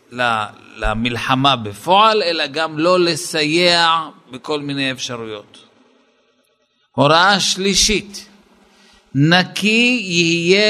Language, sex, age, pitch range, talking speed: Hebrew, male, 50-69, 140-210 Hz, 75 wpm